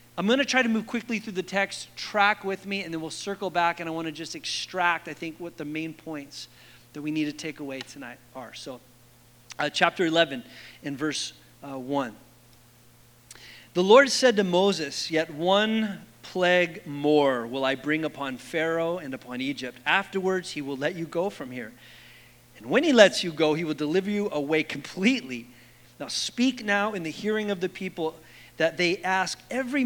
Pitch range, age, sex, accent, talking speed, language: 140-205 Hz, 40-59, male, American, 195 wpm, English